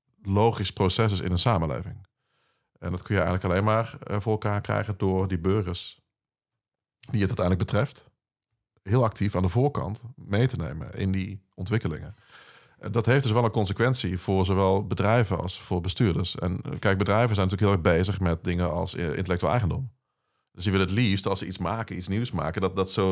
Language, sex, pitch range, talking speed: Dutch, male, 95-115 Hz, 190 wpm